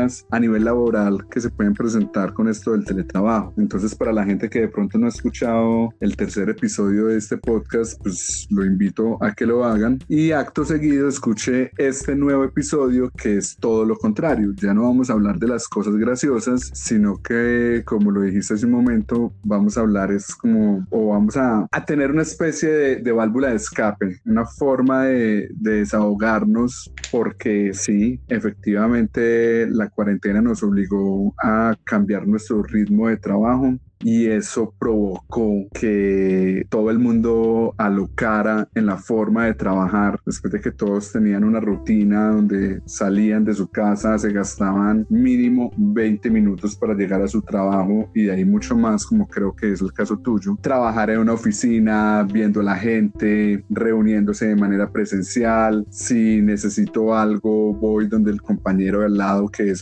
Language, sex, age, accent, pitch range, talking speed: Spanish, male, 30-49, Colombian, 100-115 Hz, 170 wpm